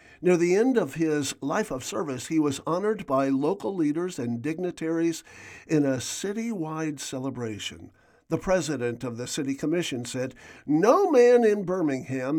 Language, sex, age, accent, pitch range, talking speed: English, male, 50-69, American, 130-180 Hz, 150 wpm